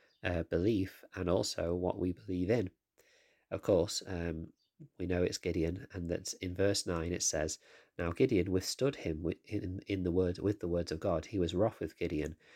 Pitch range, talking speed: 85-100 Hz, 195 wpm